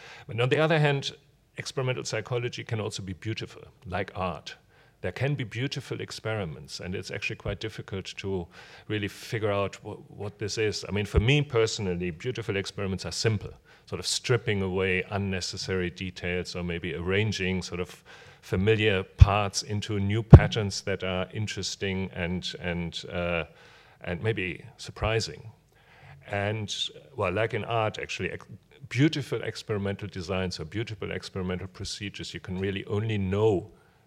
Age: 40-59